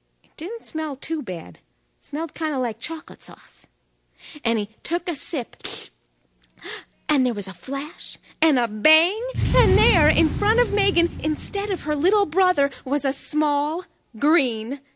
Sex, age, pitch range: female, 30-49, 230-335 Hz